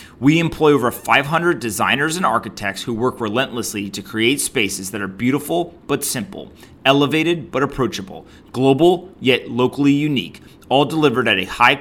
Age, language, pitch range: 30-49, English, 110-145 Hz